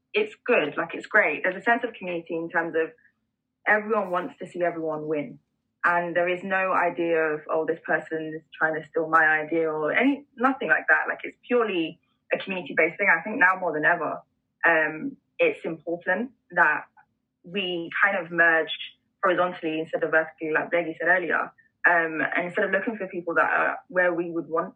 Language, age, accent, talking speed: English, 10-29, British, 195 wpm